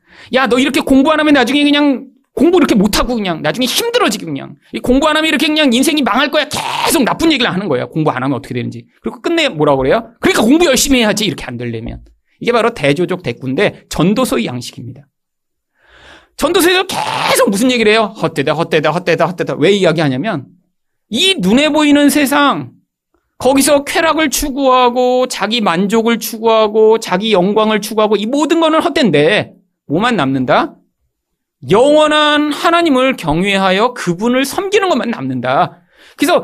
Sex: male